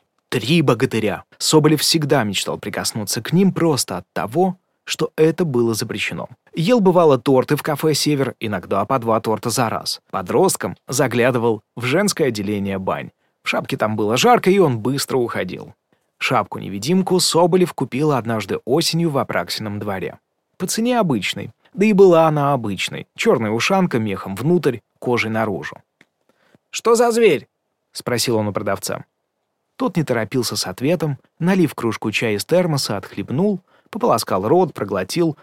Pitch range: 115-170 Hz